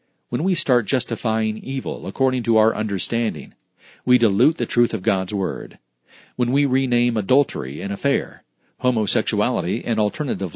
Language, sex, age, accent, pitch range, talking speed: English, male, 40-59, American, 110-135 Hz, 140 wpm